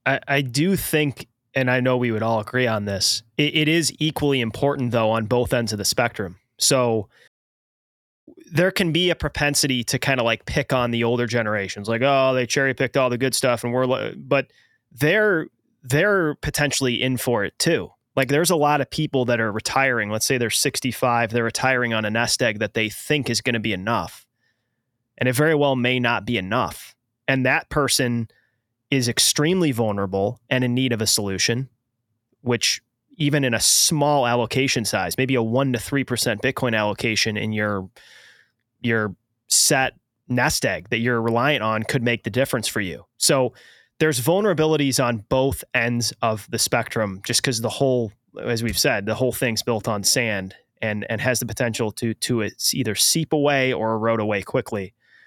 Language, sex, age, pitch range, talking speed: English, male, 20-39, 115-135 Hz, 185 wpm